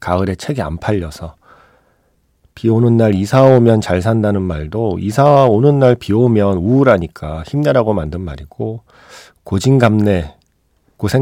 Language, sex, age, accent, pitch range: Korean, male, 40-59, native, 85-125 Hz